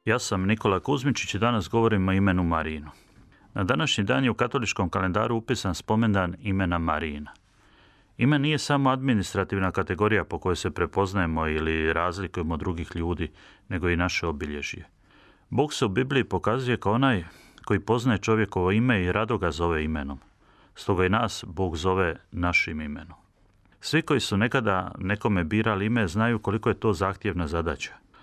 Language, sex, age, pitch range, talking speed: Croatian, male, 30-49, 90-110 Hz, 160 wpm